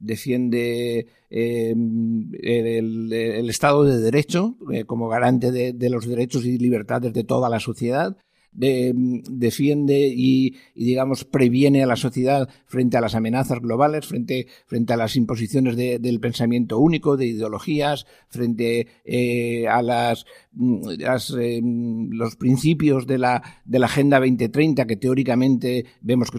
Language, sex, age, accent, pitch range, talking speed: Spanish, male, 60-79, Spanish, 120-135 Hz, 145 wpm